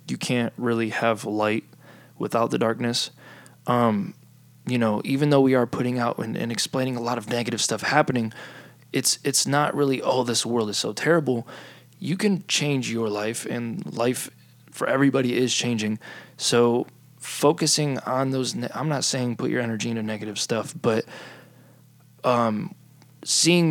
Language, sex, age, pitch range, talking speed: English, male, 20-39, 115-135 Hz, 160 wpm